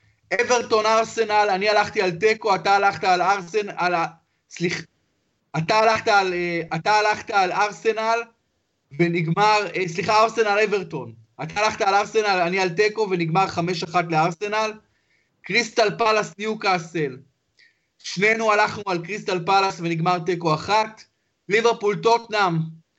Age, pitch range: 30-49, 175-215 Hz